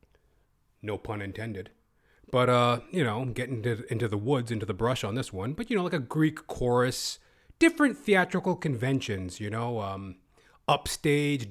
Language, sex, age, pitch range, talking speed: English, male, 30-49, 115-160 Hz, 165 wpm